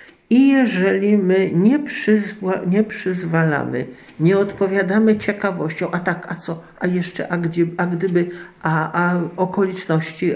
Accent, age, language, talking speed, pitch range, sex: native, 50-69, Polish, 135 wpm, 150-195 Hz, male